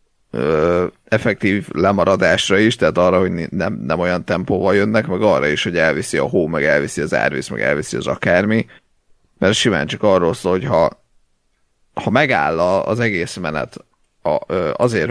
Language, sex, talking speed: Hungarian, male, 155 wpm